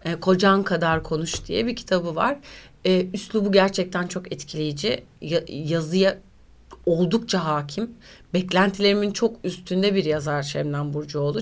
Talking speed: 110 wpm